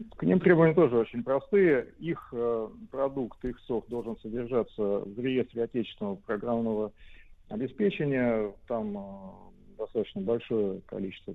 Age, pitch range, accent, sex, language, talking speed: 50-69, 110-145 Hz, native, male, Russian, 110 wpm